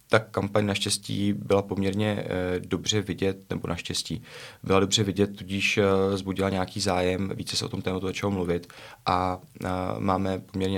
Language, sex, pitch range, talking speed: Czech, male, 90-100 Hz, 145 wpm